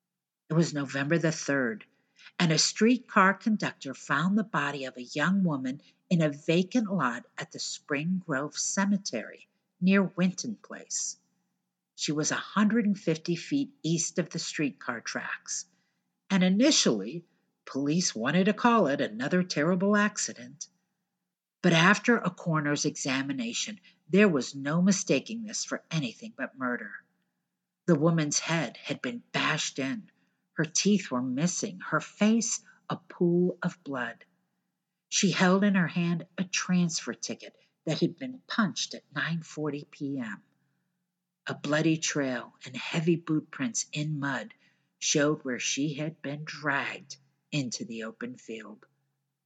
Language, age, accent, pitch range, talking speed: English, 50-69, American, 145-195 Hz, 135 wpm